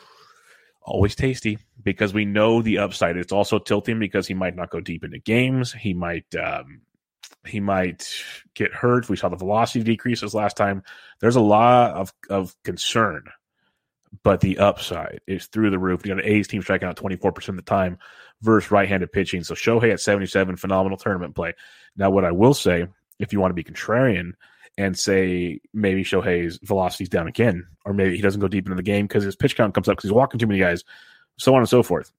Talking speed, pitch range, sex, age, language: 205 wpm, 95-110 Hz, male, 30-49, English